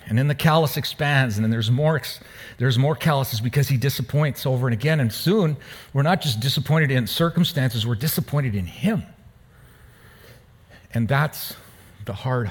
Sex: male